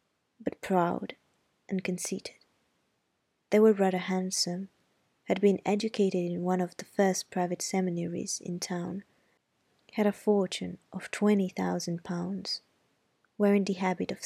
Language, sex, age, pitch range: Italian, female, 20-39, 175-200 Hz